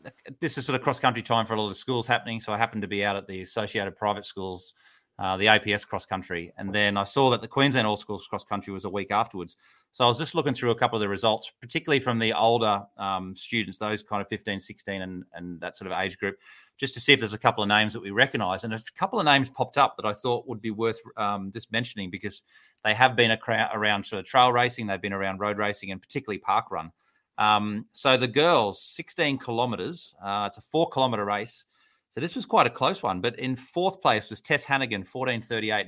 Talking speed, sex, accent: 240 wpm, male, Australian